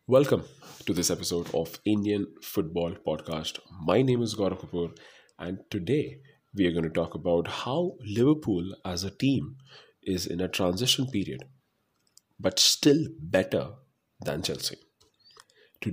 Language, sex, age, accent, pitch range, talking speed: English, male, 30-49, Indian, 95-130 Hz, 140 wpm